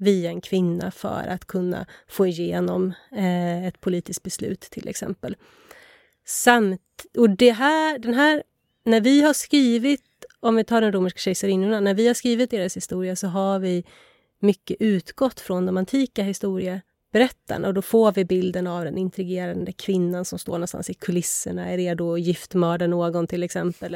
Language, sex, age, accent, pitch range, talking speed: Swedish, female, 30-49, native, 185-230 Hz, 165 wpm